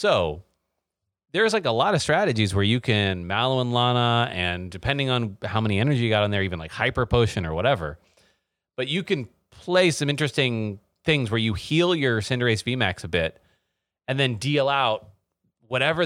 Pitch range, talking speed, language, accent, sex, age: 100-140 Hz, 185 wpm, English, American, male, 30-49